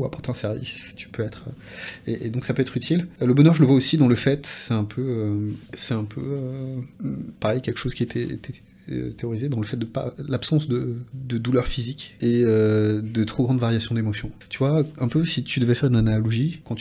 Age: 30-49